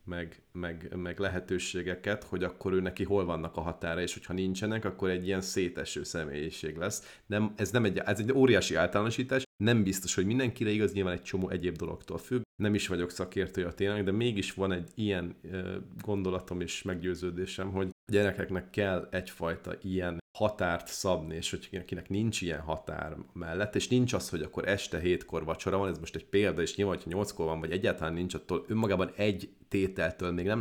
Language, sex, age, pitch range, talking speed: Hungarian, male, 30-49, 85-105 Hz, 190 wpm